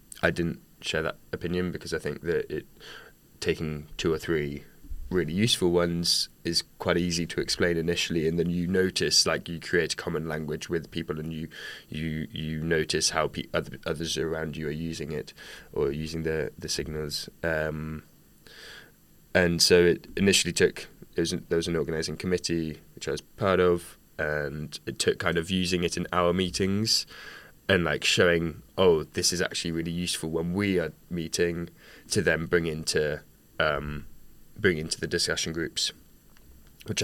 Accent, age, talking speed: British, 20-39, 165 wpm